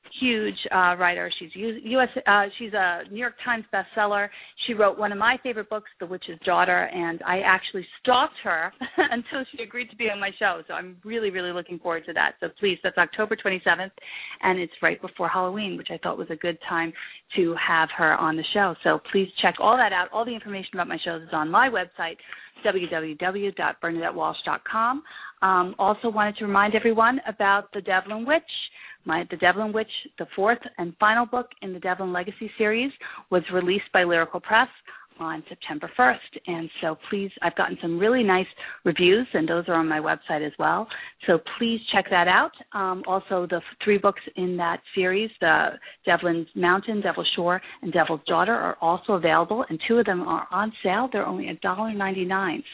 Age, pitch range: 40-59, 175-220 Hz